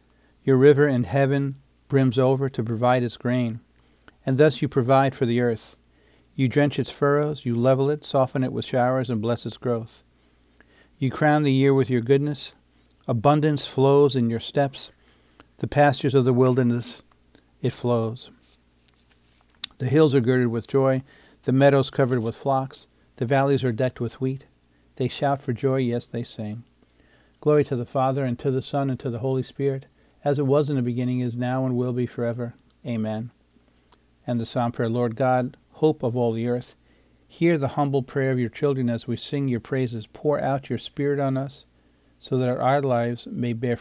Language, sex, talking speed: English, male, 185 wpm